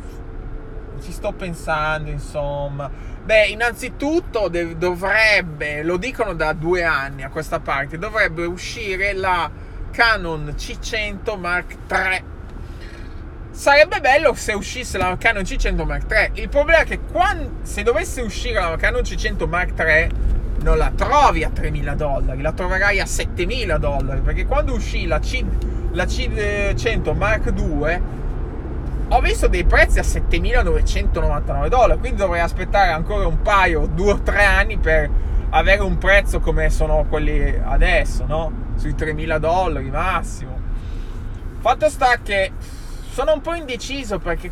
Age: 20-39